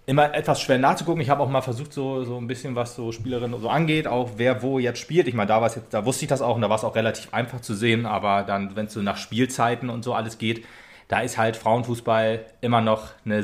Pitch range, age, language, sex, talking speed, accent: 110-130 Hz, 30-49, German, male, 270 wpm, German